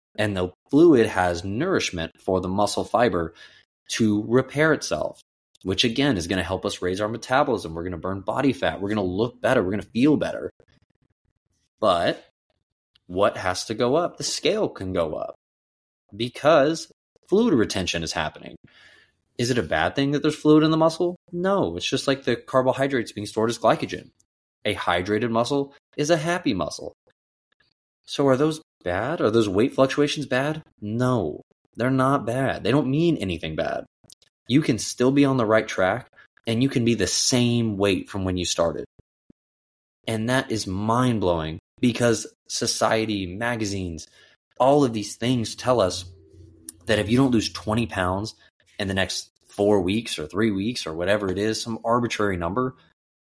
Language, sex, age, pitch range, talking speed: English, male, 20-39, 95-130 Hz, 175 wpm